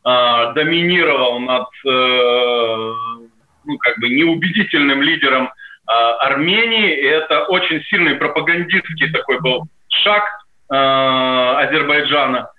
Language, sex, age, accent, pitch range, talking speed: Russian, male, 20-39, native, 130-175 Hz, 80 wpm